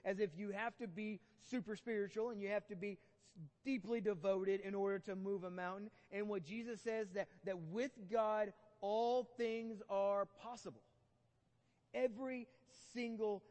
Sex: male